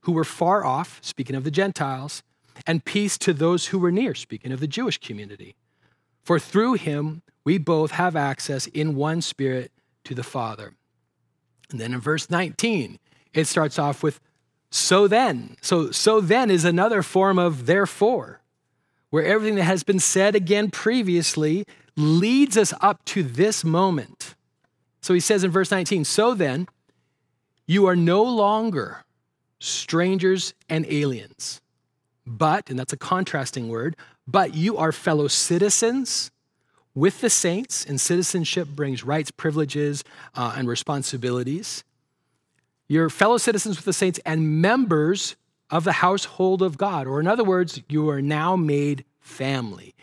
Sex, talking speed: male, 150 wpm